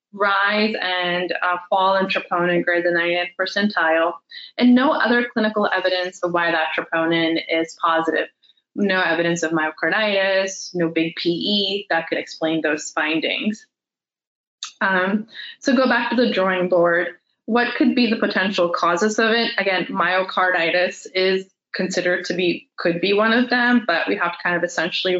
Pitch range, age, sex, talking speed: 175-215 Hz, 20-39, female, 160 wpm